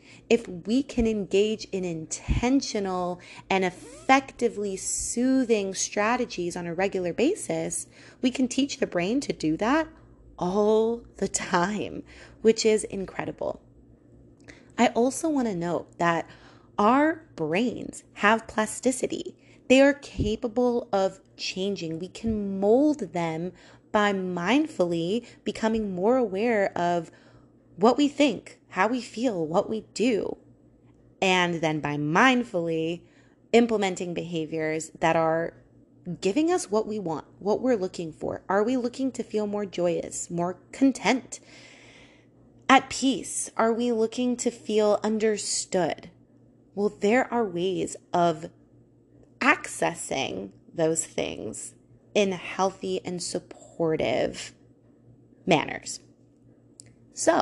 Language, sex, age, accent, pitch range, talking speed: English, female, 30-49, American, 175-240 Hz, 115 wpm